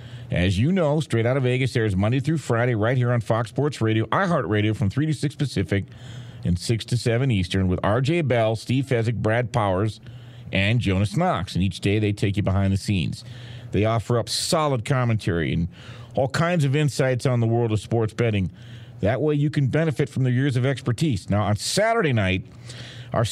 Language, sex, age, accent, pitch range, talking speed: English, male, 50-69, American, 105-130 Hz, 200 wpm